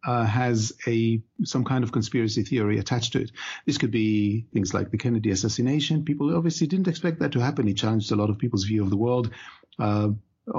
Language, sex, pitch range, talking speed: English, male, 110-145 Hz, 210 wpm